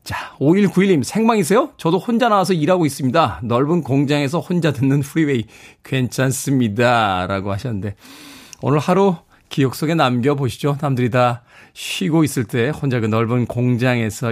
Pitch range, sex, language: 115-160 Hz, male, Korean